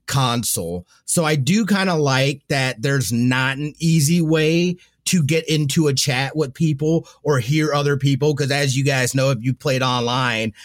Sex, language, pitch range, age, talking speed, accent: male, English, 120-150 Hz, 30-49, 185 wpm, American